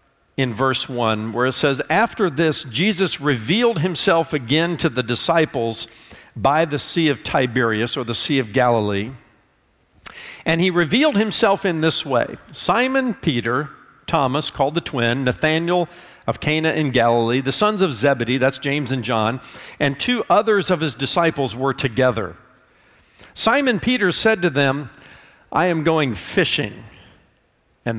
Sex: male